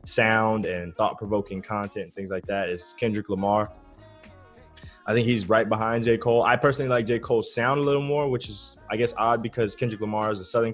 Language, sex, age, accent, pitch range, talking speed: English, male, 20-39, American, 100-140 Hz, 210 wpm